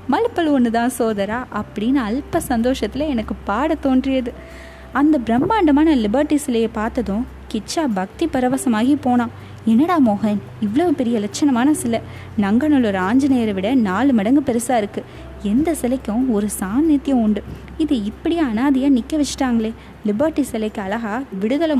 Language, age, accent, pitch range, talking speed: Tamil, 20-39, native, 225-285 Hz, 120 wpm